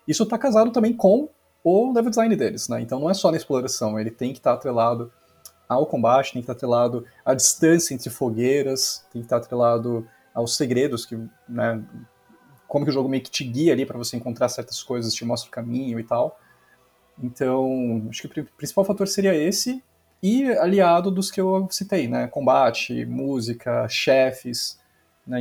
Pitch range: 120-160 Hz